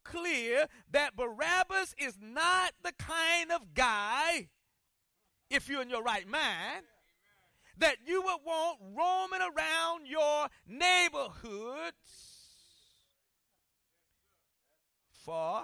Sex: male